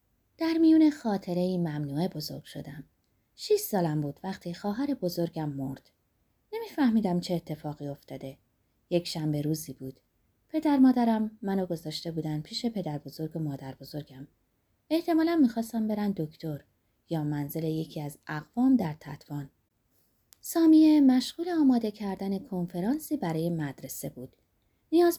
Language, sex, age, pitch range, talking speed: Persian, female, 20-39, 150-230 Hz, 125 wpm